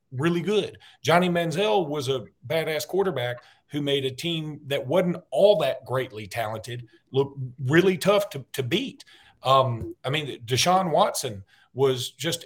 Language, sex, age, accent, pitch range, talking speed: English, male, 40-59, American, 120-155 Hz, 150 wpm